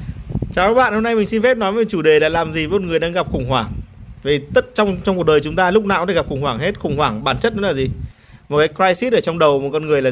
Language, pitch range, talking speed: Vietnamese, 140-215 Hz, 325 wpm